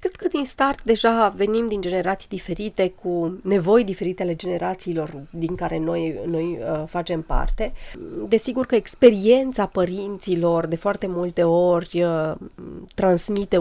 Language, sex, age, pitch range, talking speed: Romanian, female, 30-49, 165-205 Hz, 130 wpm